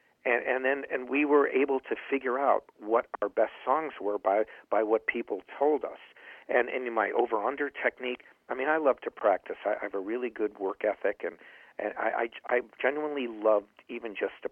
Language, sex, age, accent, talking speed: English, male, 50-69, American, 210 wpm